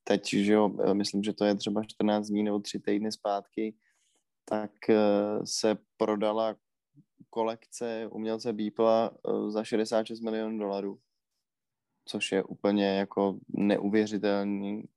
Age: 20-39